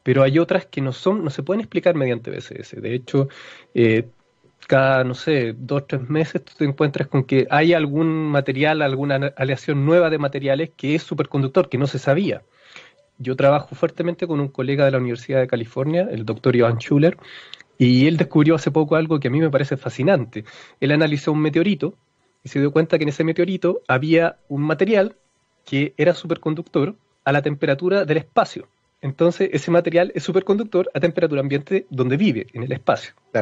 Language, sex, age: Spanish, male, 20-39